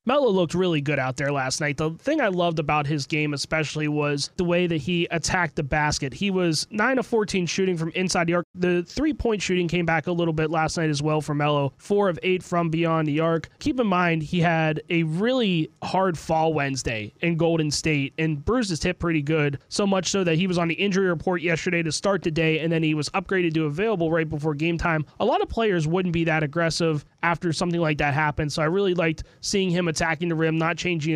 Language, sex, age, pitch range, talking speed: English, male, 20-39, 160-190 Hz, 235 wpm